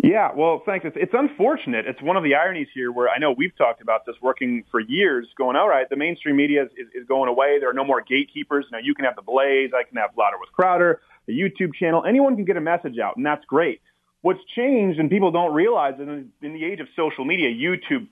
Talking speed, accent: 250 wpm, American